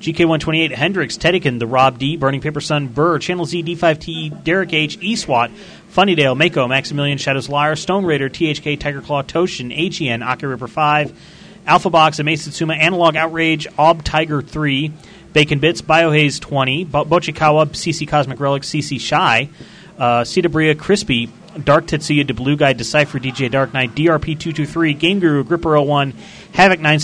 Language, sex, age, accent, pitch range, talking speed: English, male, 30-49, American, 135-165 Hz, 175 wpm